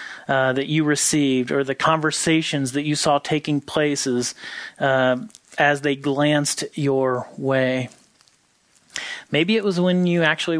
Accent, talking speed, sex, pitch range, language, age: American, 130 wpm, male, 130-150 Hz, English, 30-49